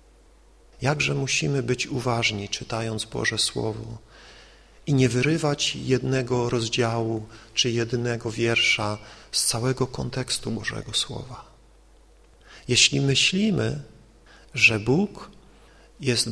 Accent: native